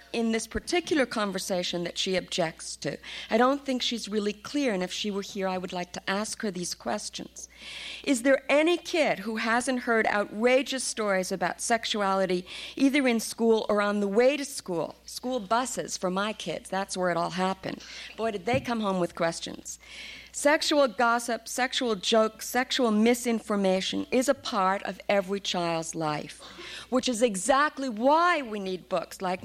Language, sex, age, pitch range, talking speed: English, female, 50-69, 190-250 Hz, 175 wpm